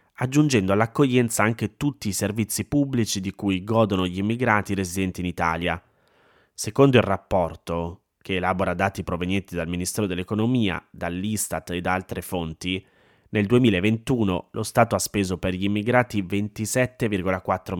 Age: 20-39